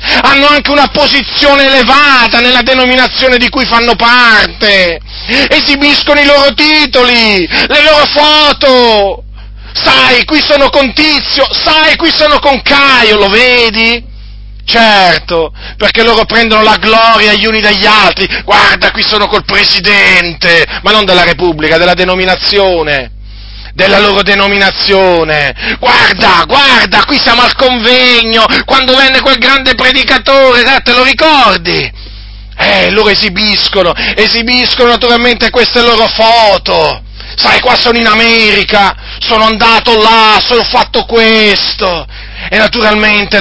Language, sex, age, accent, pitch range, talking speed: Italian, male, 30-49, native, 195-255 Hz, 125 wpm